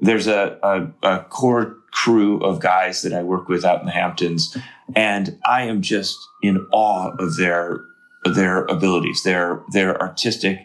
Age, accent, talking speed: 30-49, American, 165 wpm